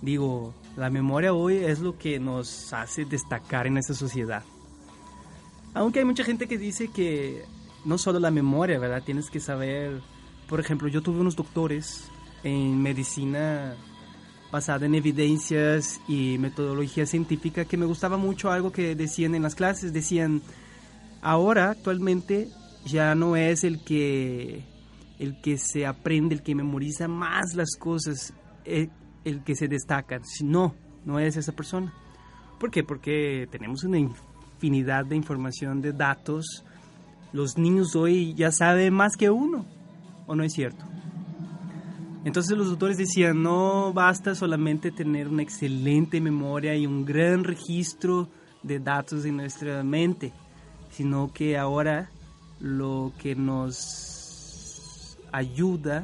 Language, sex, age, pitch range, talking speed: Spanish, male, 30-49, 140-175 Hz, 140 wpm